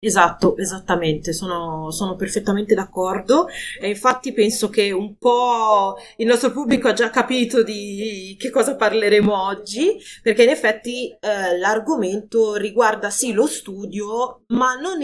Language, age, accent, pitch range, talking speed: Italian, 30-49, native, 180-235 Hz, 135 wpm